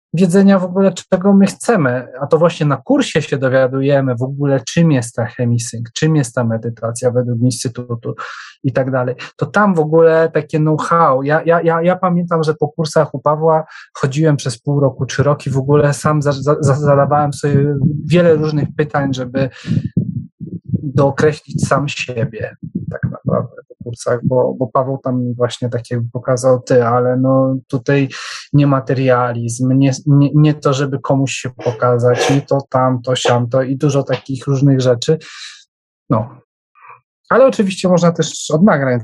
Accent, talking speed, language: native, 165 wpm, Polish